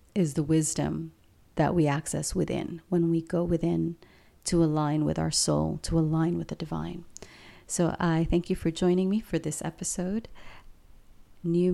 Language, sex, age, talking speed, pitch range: English, female, 40-59, 165 wpm, 150-180 Hz